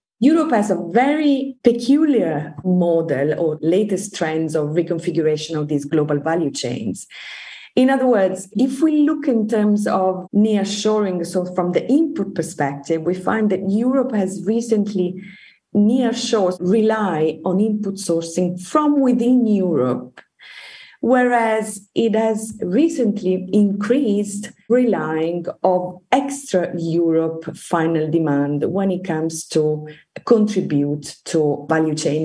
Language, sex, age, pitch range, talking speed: English, female, 30-49, 160-220 Hz, 120 wpm